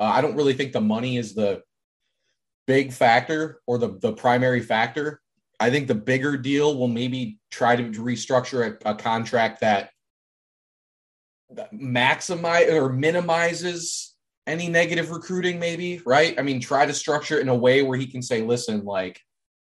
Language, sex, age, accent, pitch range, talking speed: English, male, 20-39, American, 105-130 Hz, 165 wpm